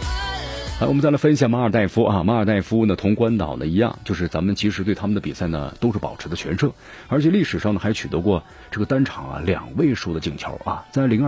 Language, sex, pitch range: Chinese, male, 90-120 Hz